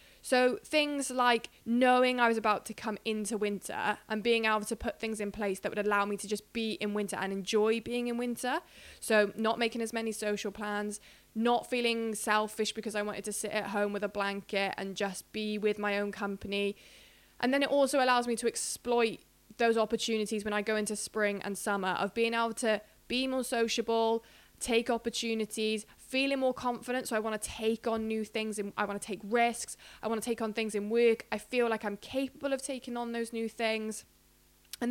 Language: English